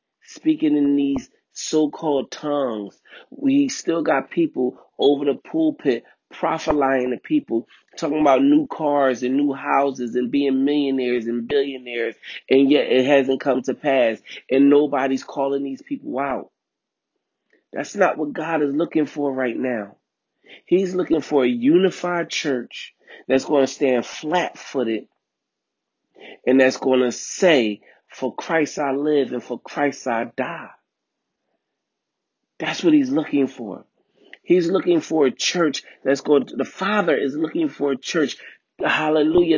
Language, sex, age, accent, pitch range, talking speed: English, male, 30-49, American, 135-190 Hz, 145 wpm